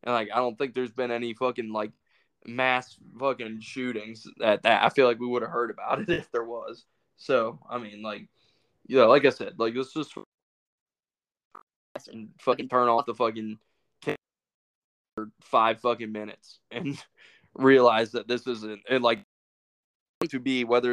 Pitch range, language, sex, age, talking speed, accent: 110-125 Hz, English, male, 20-39, 175 wpm, American